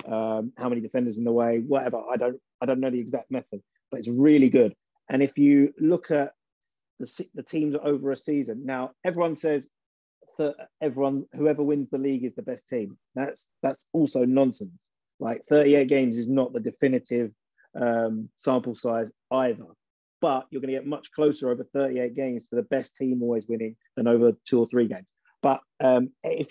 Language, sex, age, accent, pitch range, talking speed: English, male, 30-49, British, 120-140 Hz, 190 wpm